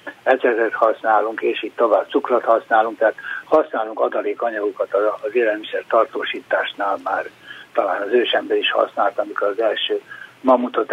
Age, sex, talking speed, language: 60-79, male, 125 wpm, Hungarian